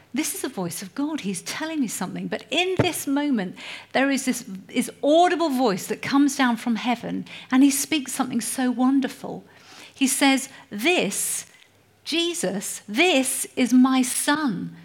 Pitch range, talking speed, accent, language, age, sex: 205-275 Hz, 160 wpm, British, English, 50-69, female